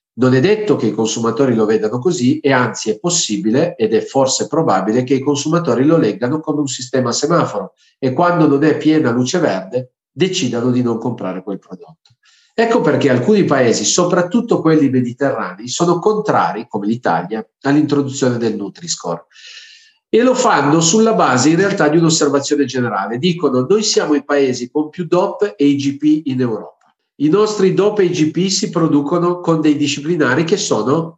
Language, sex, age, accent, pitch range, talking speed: Italian, male, 50-69, native, 125-175 Hz, 170 wpm